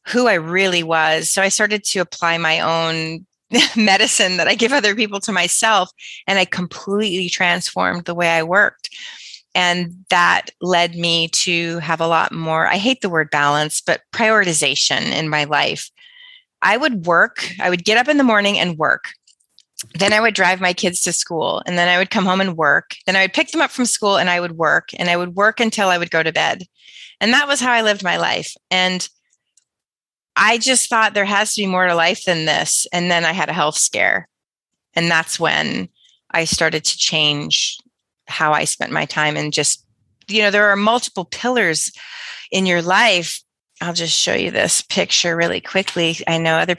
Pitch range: 165-205 Hz